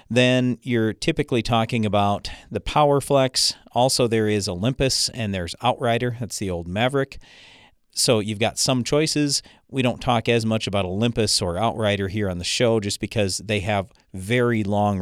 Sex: male